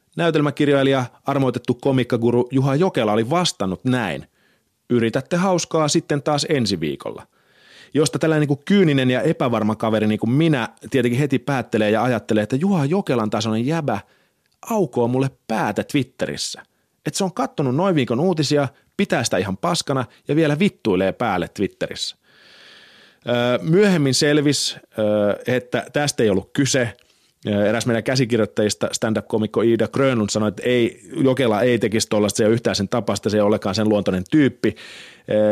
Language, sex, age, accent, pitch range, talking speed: Finnish, male, 30-49, native, 110-140 Hz, 145 wpm